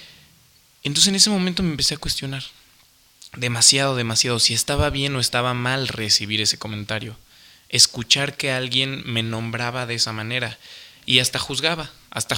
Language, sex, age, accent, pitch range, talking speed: Spanish, male, 20-39, Mexican, 115-150 Hz, 150 wpm